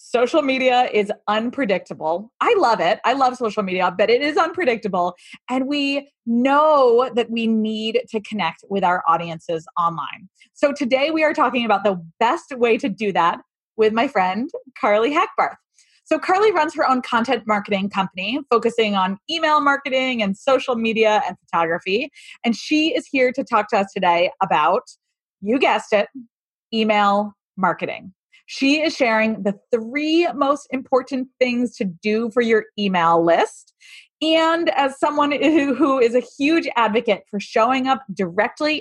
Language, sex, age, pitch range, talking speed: English, female, 20-39, 205-280 Hz, 160 wpm